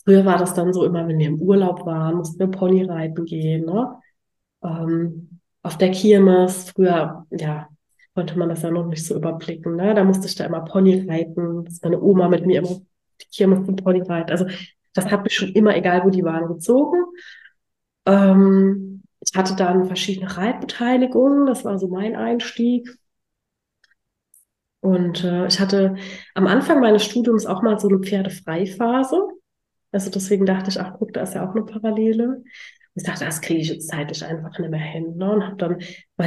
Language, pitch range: German, 175-205 Hz